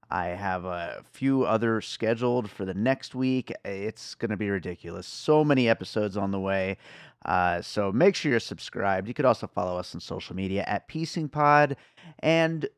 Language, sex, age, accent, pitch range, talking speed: English, male, 30-49, American, 95-140 Hz, 175 wpm